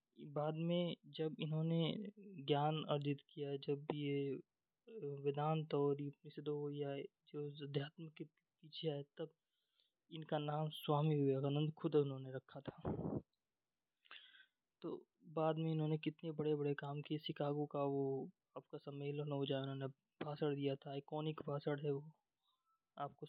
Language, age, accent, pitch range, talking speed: Hindi, 20-39, native, 145-160 Hz, 130 wpm